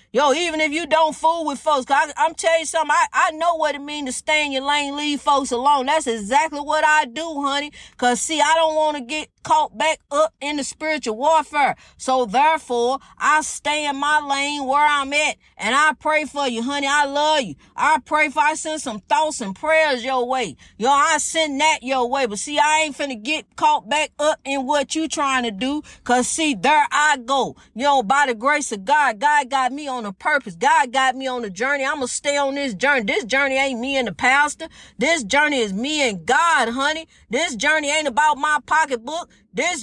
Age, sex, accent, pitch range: 40-59, female, American, 265-310 Hz